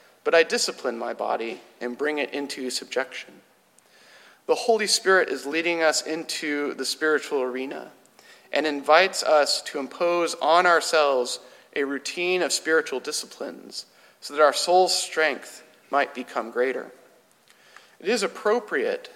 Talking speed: 135 wpm